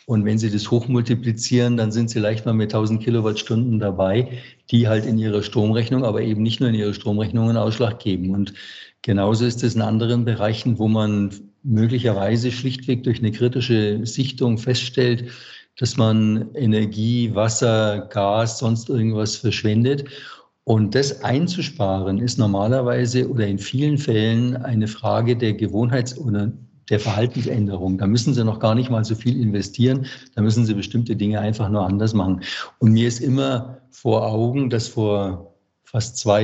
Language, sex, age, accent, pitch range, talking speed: German, male, 50-69, German, 105-125 Hz, 165 wpm